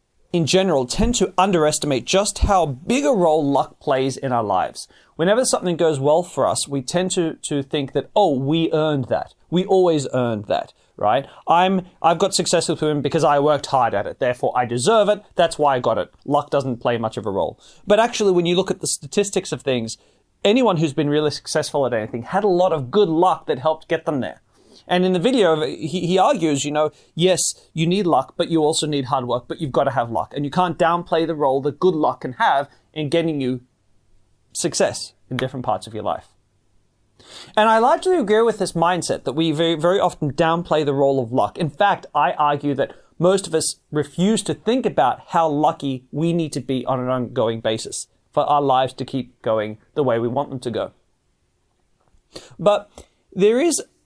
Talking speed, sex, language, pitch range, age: 210 wpm, male, English, 135-180 Hz, 30-49